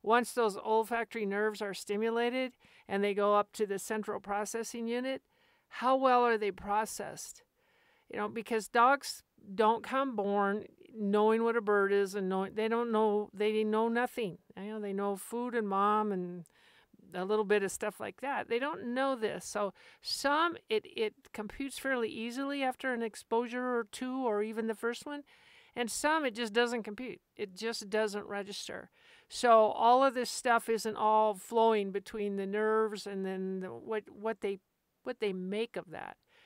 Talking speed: 180 wpm